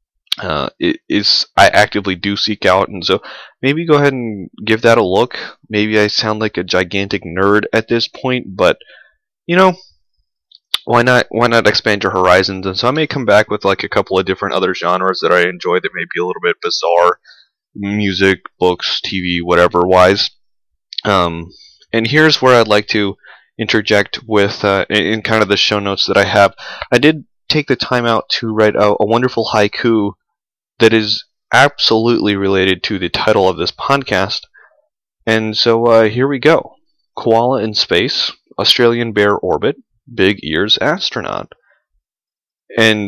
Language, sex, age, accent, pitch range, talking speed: English, male, 20-39, American, 95-120 Hz, 175 wpm